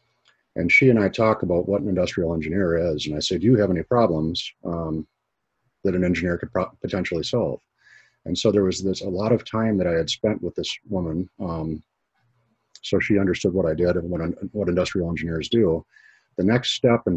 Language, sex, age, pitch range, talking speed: English, male, 40-59, 85-110 Hz, 210 wpm